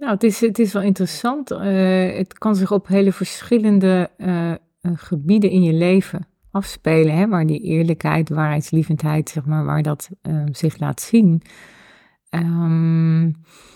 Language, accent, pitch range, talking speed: Dutch, Dutch, 160-195 Hz, 145 wpm